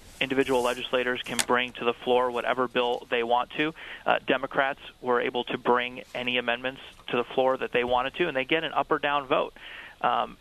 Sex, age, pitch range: male, 30-49, 120-140 Hz